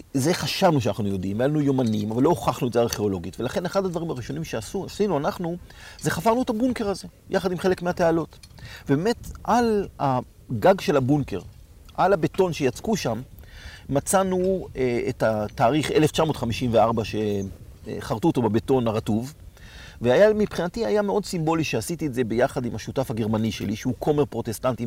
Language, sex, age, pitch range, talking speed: Hebrew, male, 40-59, 110-155 Hz, 145 wpm